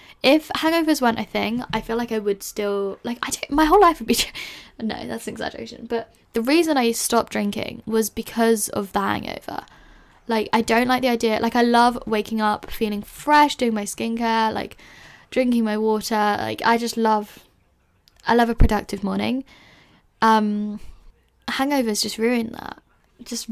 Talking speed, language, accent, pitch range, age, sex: 175 wpm, English, British, 210-245 Hz, 10-29, female